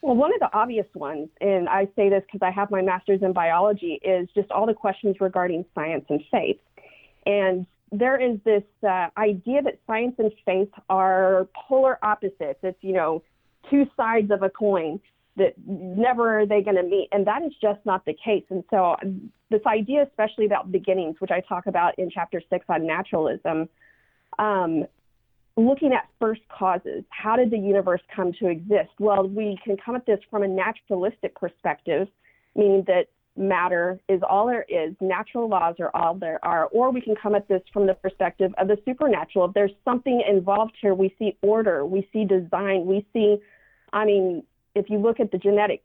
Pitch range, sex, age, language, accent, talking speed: 185-220 Hz, female, 40-59, English, American, 190 wpm